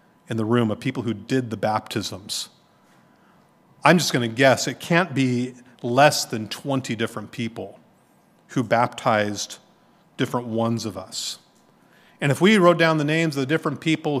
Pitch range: 120-170 Hz